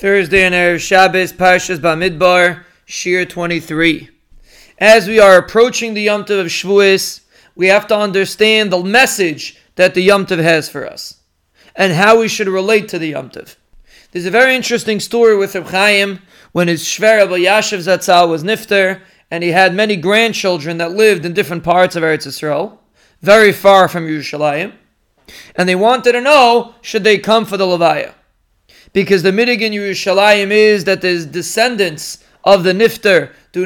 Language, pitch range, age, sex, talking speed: English, 180-220 Hz, 30-49, male, 170 wpm